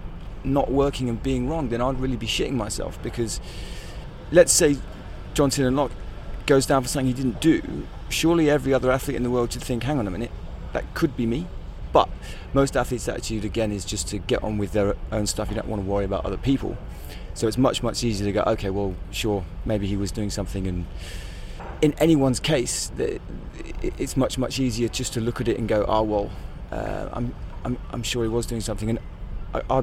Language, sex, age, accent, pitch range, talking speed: English, male, 30-49, British, 100-125 Hz, 215 wpm